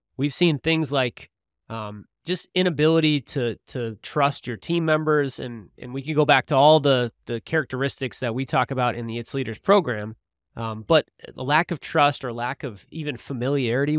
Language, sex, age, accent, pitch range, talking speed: English, male, 20-39, American, 120-150 Hz, 190 wpm